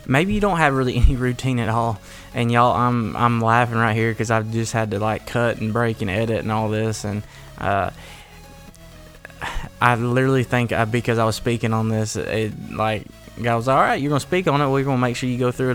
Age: 20-39